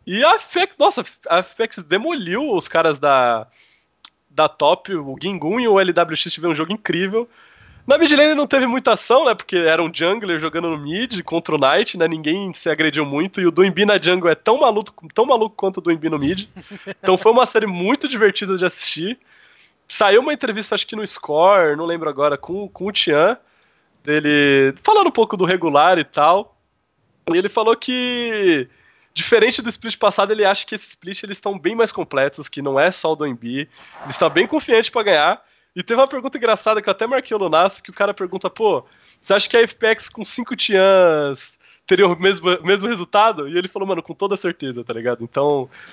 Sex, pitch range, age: male, 160-220 Hz, 20-39